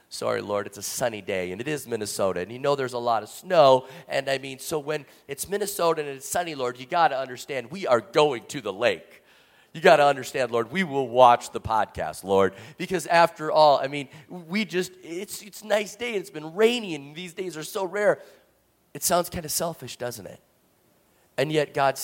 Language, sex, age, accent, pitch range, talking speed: English, male, 40-59, American, 115-155 Hz, 220 wpm